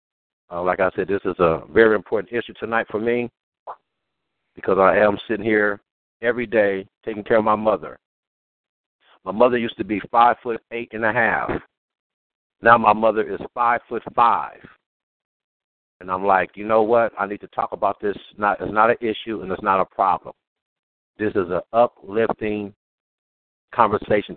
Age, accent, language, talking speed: 60-79, American, English, 170 wpm